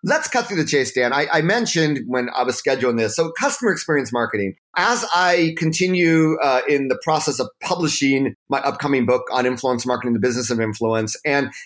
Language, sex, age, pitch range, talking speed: English, male, 30-49, 120-160 Hz, 195 wpm